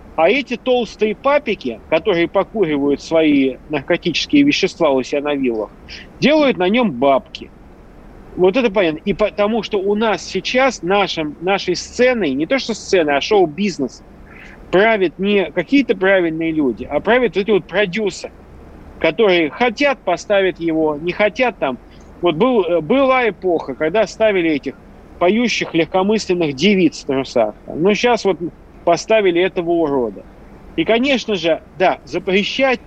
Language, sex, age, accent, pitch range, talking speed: Russian, male, 40-59, native, 160-220 Hz, 140 wpm